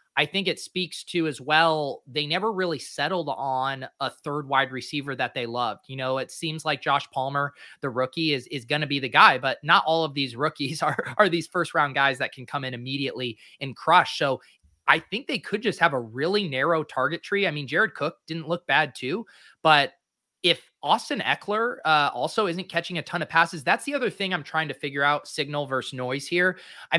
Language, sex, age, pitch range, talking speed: English, male, 20-39, 130-170 Hz, 220 wpm